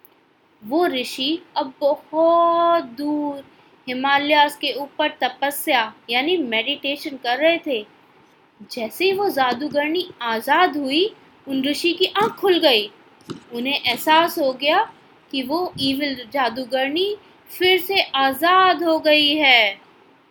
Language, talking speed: Hindi, 120 wpm